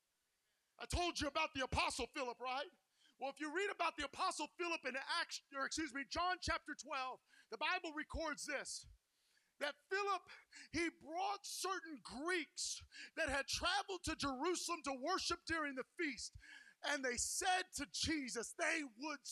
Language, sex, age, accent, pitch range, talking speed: English, male, 40-59, American, 275-320 Hz, 160 wpm